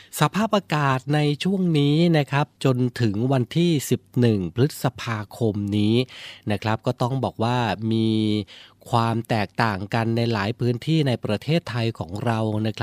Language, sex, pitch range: Thai, male, 115-140 Hz